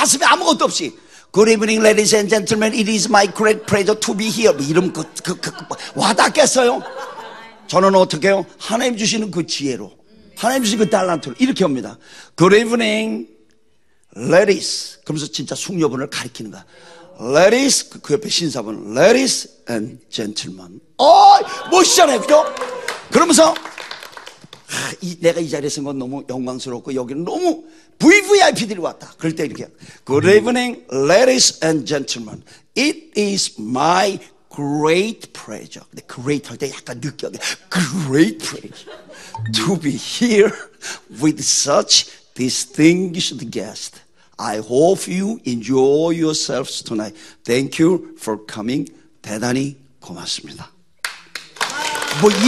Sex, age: male, 50-69